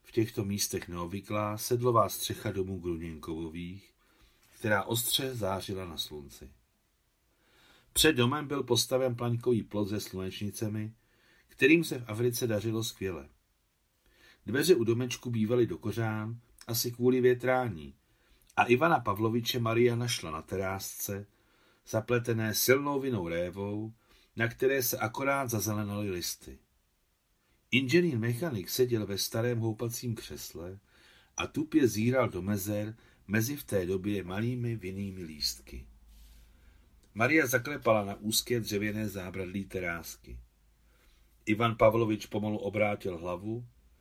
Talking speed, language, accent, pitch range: 115 wpm, Czech, native, 95-120 Hz